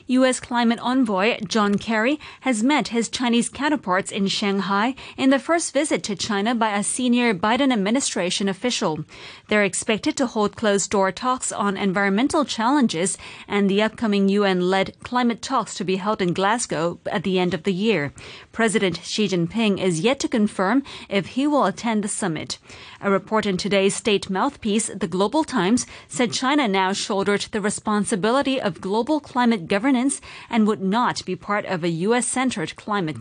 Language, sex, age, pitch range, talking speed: English, female, 30-49, 190-240 Hz, 165 wpm